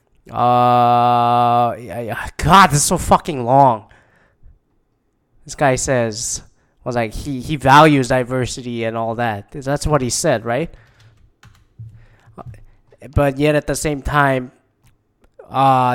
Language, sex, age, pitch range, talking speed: English, male, 20-39, 120-145 Hz, 130 wpm